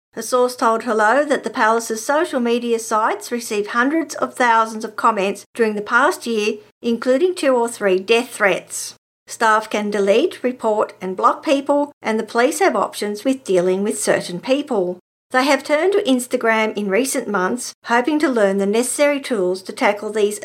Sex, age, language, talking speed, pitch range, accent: female, 50-69, English, 175 wpm, 205-265 Hz, Australian